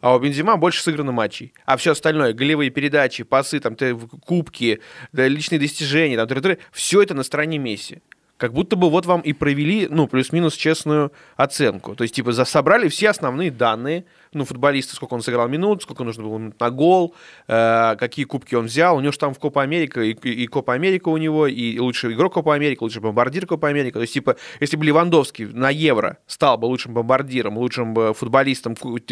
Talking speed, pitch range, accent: 180 wpm, 125-160 Hz, native